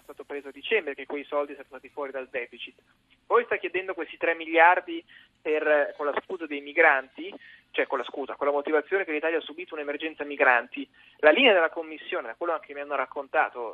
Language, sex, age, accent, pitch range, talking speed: Italian, male, 30-49, native, 145-170 Hz, 205 wpm